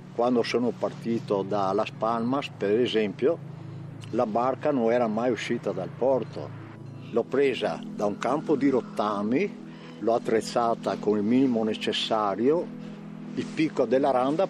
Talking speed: 135 wpm